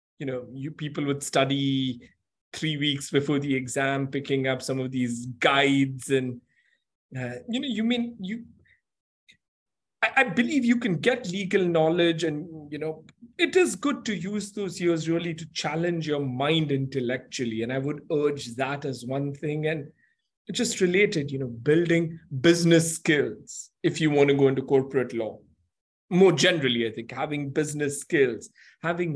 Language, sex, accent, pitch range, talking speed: English, male, Indian, 140-175 Hz, 165 wpm